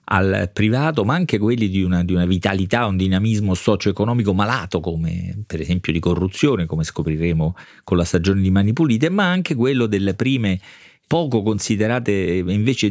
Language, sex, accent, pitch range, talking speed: Italian, male, native, 95-120 Hz, 165 wpm